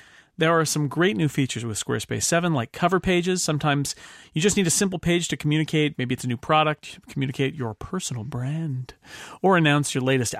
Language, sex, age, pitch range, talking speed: English, male, 40-59, 130-170 Hz, 195 wpm